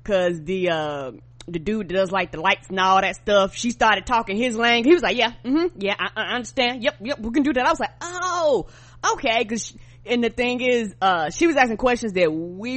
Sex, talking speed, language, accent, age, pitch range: female, 240 wpm, English, American, 20-39, 165-230 Hz